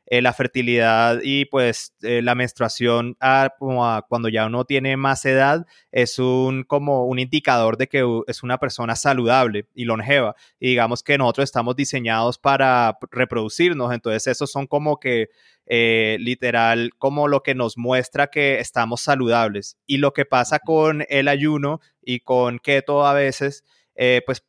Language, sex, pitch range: Spanish, male, 120-145 Hz